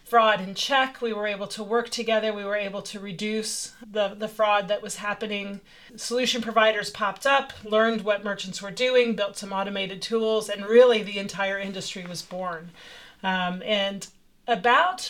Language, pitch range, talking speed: English, 195-230 Hz, 170 wpm